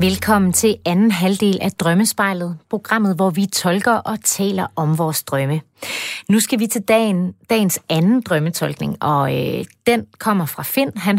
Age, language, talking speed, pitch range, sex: 30-49, Danish, 160 wpm, 170-220 Hz, female